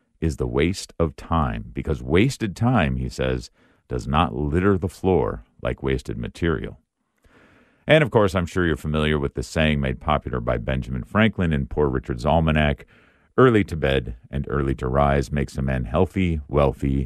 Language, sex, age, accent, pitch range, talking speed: English, male, 50-69, American, 70-100 Hz, 170 wpm